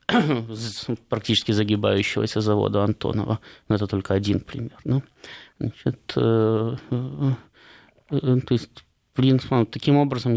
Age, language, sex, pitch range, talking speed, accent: 20-39, Russian, male, 100-125 Hz, 75 wpm, native